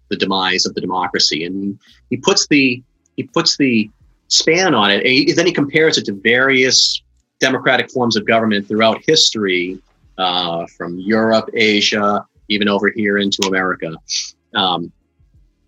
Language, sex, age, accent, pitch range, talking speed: English, male, 30-49, American, 95-120 Hz, 150 wpm